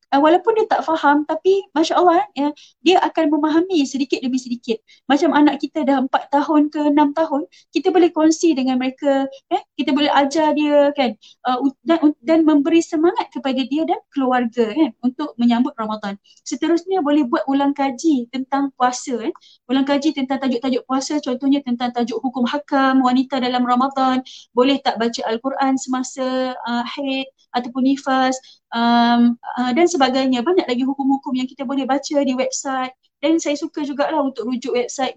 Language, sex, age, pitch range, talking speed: Malay, female, 20-39, 255-305 Hz, 150 wpm